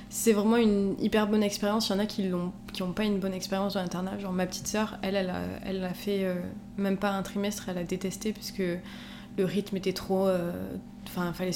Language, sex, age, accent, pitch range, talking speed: French, female, 20-39, French, 190-210 Hz, 235 wpm